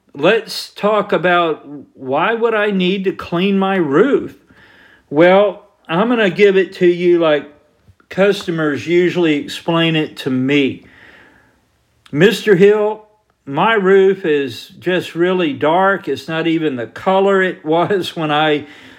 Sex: male